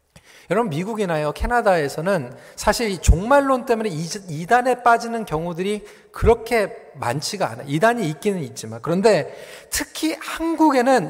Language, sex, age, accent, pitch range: Korean, male, 40-59, native, 185-260 Hz